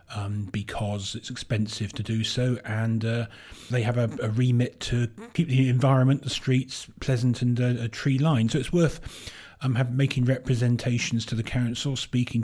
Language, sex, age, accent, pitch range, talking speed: English, male, 40-59, British, 110-125 Hz, 175 wpm